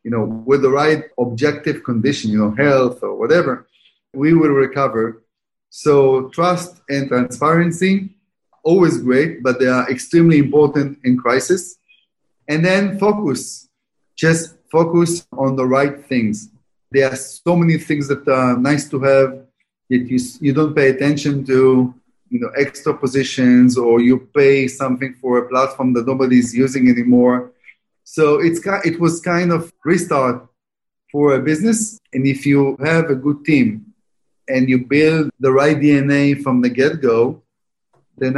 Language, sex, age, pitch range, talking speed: English, male, 30-49, 130-155 Hz, 150 wpm